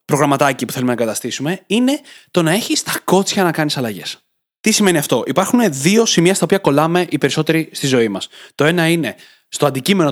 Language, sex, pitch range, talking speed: Greek, male, 130-175 Hz, 195 wpm